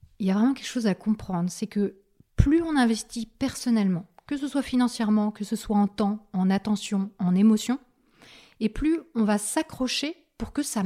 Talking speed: 195 wpm